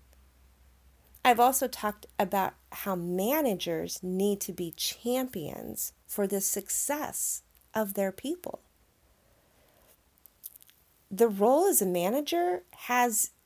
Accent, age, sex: American, 40-59, female